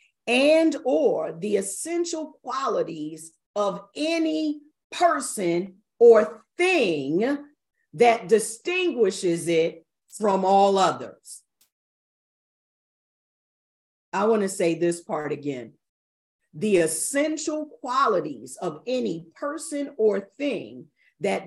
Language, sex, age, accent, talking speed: English, female, 40-59, American, 85 wpm